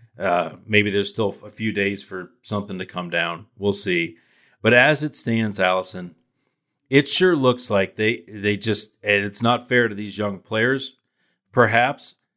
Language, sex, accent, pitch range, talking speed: English, male, American, 95-115 Hz, 170 wpm